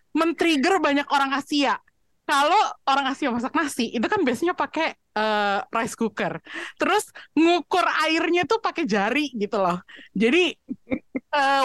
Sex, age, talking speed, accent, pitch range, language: female, 20-39, 135 wpm, native, 225-295 Hz, Indonesian